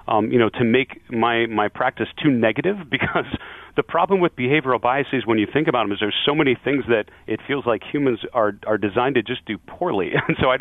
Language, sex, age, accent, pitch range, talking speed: English, male, 40-59, American, 105-130 Hz, 230 wpm